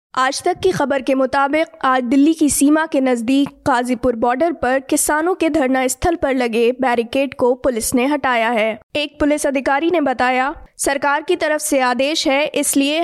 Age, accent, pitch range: 20-39, native, 255-300 Hz